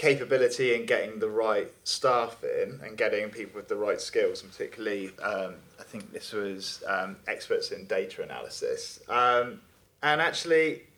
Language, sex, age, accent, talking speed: English, male, 20-39, British, 155 wpm